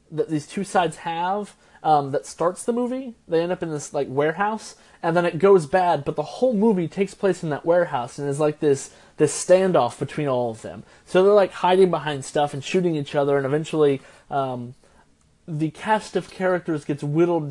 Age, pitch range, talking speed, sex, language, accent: 20-39, 145-195 Hz, 205 wpm, male, English, American